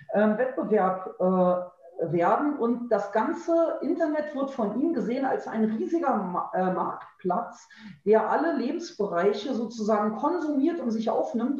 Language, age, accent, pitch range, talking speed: German, 40-59, German, 210-265 Hz, 115 wpm